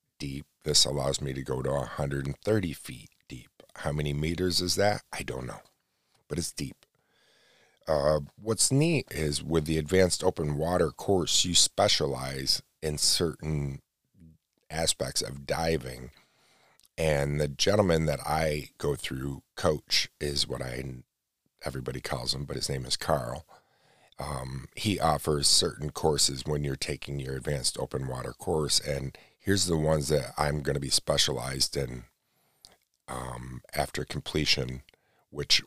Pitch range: 70-80 Hz